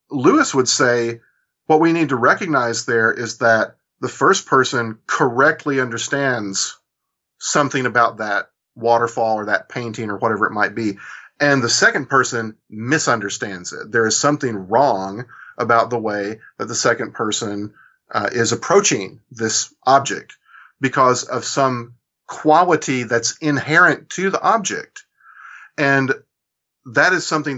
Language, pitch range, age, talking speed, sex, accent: English, 110-135 Hz, 40-59, 135 wpm, male, American